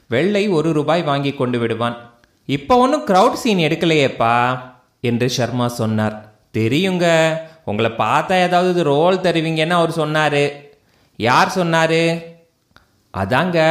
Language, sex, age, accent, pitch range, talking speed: Tamil, male, 30-49, native, 115-155 Hz, 110 wpm